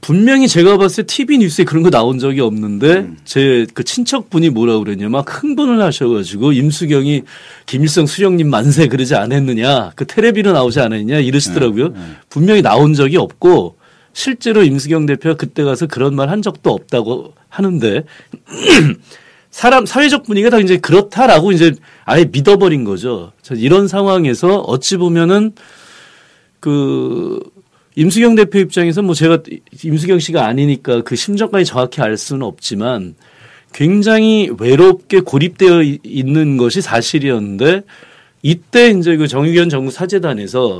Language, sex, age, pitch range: Korean, male, 40-59, 135-195 Hz